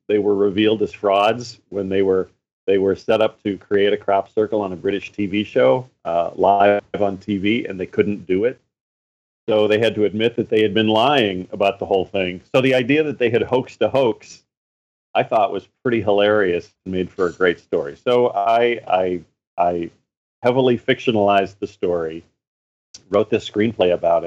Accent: American